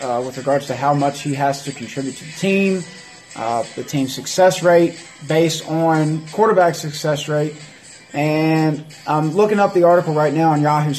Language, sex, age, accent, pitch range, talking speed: English, male, 30-49, American, 130-170 Hz, 180 wpm